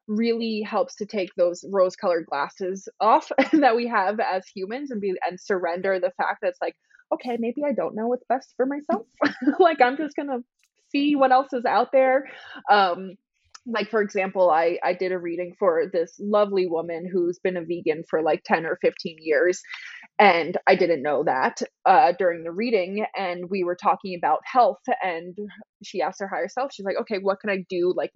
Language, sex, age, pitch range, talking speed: English, female, 20-39, 185-250 Hz, 200 wpm